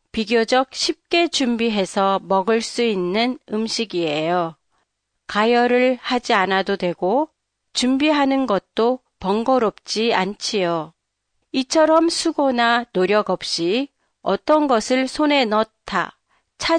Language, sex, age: Japanese, female, 40-59